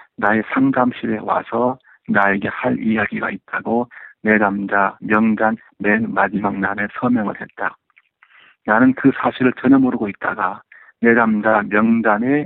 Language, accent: Korean, native